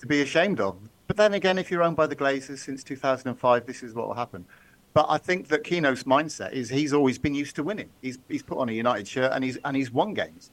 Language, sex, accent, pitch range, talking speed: English, male, British, 130-175 Hz, 260 wpm